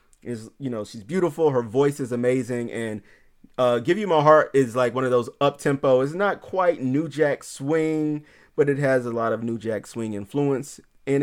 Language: English